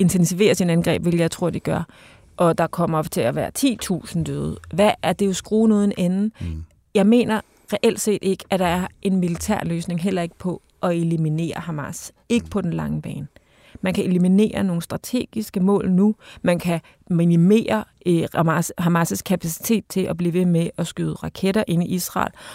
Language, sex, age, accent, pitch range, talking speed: Danish, female, 30-49, native, 165-195 Hz, 185 wpm